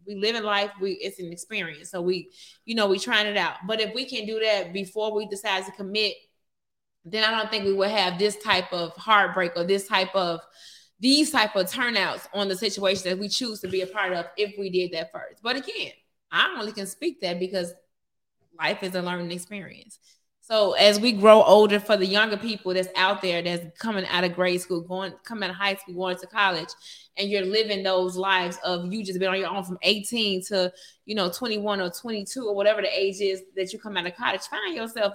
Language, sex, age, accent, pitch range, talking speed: English, female, 20-39, American, 185-215 Hz, 230 wpm